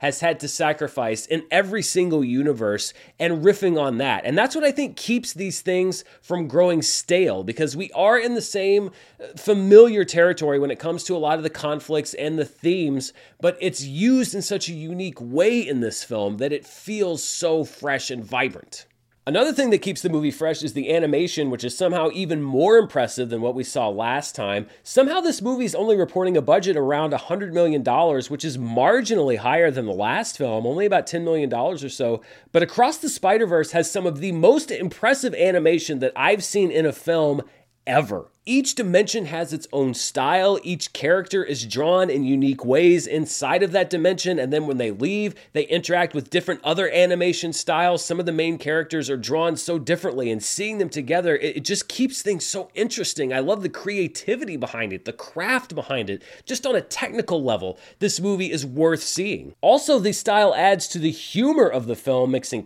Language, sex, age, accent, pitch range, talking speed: English, male, 30-49, American, 145-195 Hz, 195 wpm